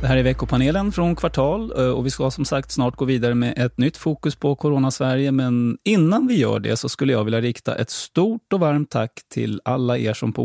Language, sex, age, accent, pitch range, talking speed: Swedish, male, 30-49, native, 115-145 Hz, 230 wpm